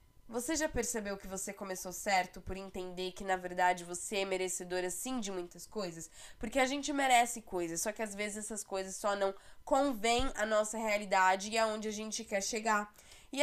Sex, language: female, Portuguese